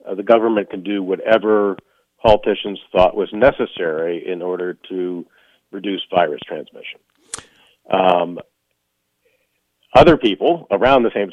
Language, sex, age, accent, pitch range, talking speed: English, male, 50-69, American, 95-115 Hz, 115 wpm